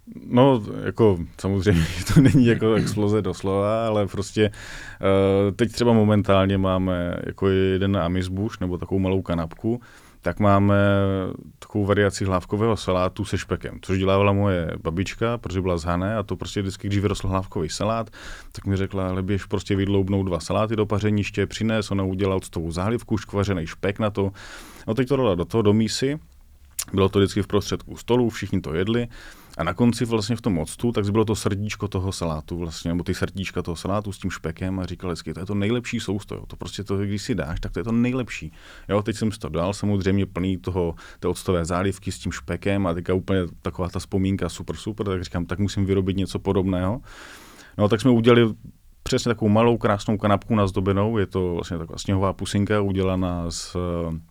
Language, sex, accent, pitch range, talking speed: Czech, male, native, 90-105 Hz, 190 wpm